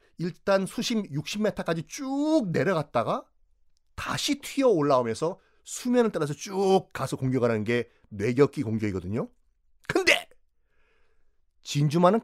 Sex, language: male, Korean